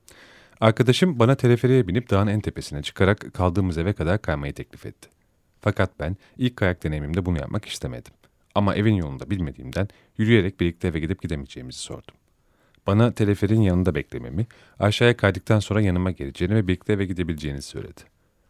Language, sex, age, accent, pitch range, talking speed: Turkish, male, 40-59, native, 80-110 Hz, 150 wpm